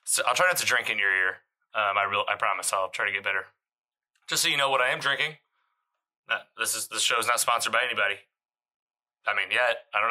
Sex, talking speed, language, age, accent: male, 245 wpm, English, 20-39, American